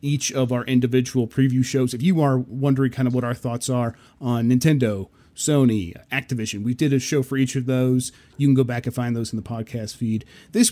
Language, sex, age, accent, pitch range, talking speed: English, male, 30-49, American, 120-145 Hz, 225 wpm